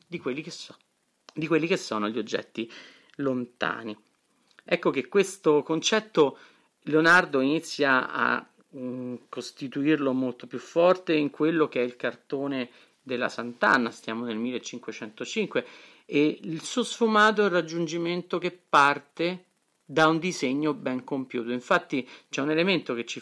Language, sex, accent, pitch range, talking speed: Italian, male, native, 120-155 Hz, 140 wpm